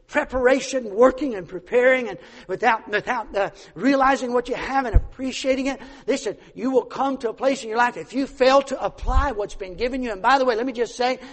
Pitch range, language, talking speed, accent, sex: 260-370 Hz, English, 220 wpm, American, male